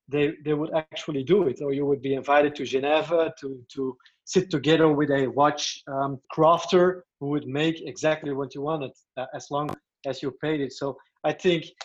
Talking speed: 205 wpm